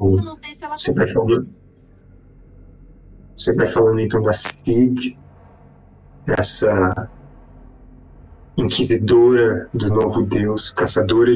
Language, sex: Portuguese, male